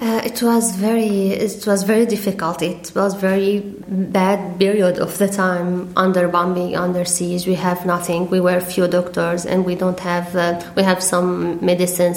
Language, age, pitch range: English, 20-39, 180-200 Hz